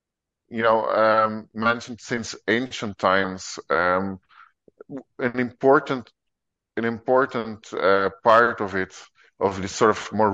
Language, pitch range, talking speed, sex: English, 95-110 Hz, 120 wpm, male